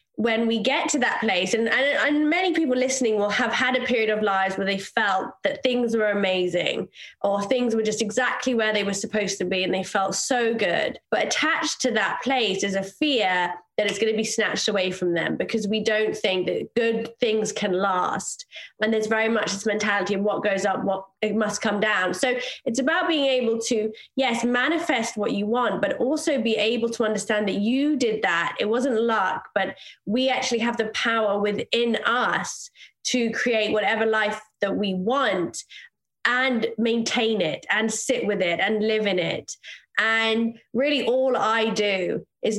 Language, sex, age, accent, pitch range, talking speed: English, female, 20-39, British, 210-250 Hz, 195 wpm